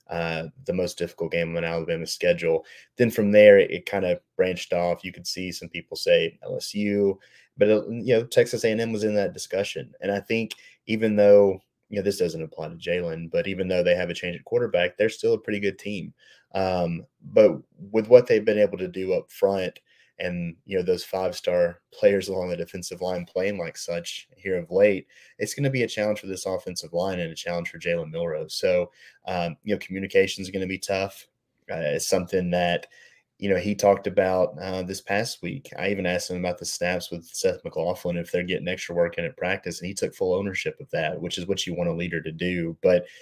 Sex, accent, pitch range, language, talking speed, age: male, American, 90-135 Hz, English, 225 wpm, 30-49